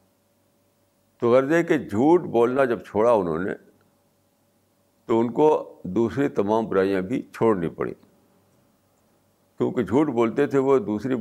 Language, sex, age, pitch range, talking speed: Urdu, male, 60-79, 95-140 Hz, 135 wpm